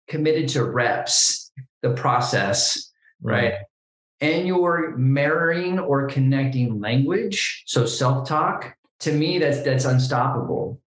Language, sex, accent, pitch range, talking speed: English, male, American, 130-160 Hz, 105 wpm